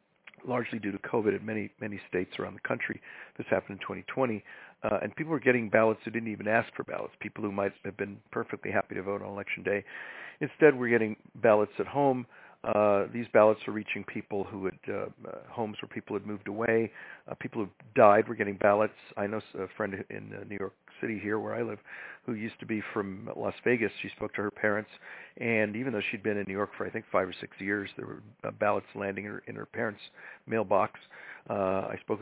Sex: male